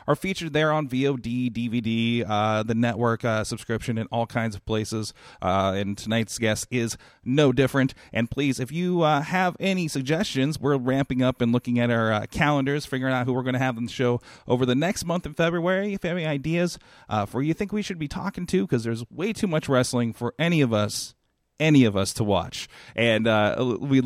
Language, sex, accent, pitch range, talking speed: English, male, American, 115-155 Hz, 220 wpm